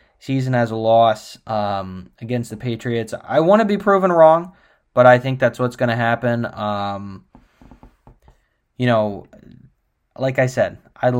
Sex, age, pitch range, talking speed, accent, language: male, 10-29, 105-125 Hz, 155 wpm, American, English